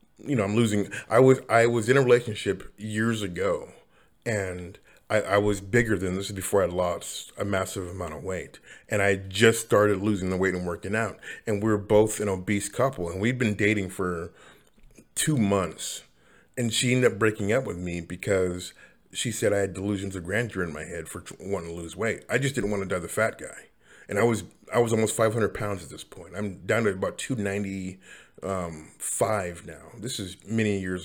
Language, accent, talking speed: English, American, 205 wpm